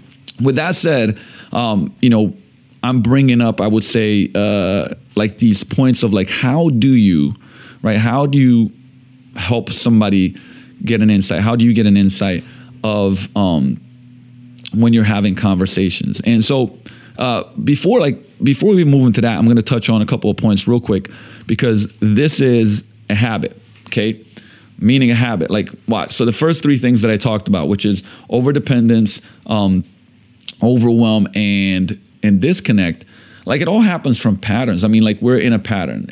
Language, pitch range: English, 105-125 Hz